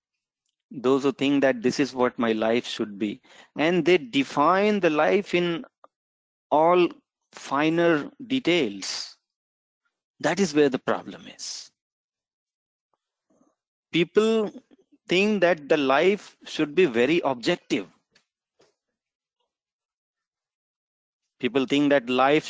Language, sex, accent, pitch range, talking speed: English, male, Indian, 140-225 Hz, 105 wpm